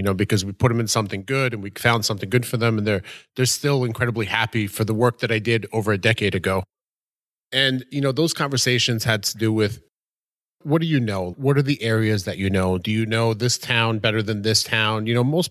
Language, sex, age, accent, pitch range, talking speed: English, male, 30-49, American, 105-125 Hz, 250 wpm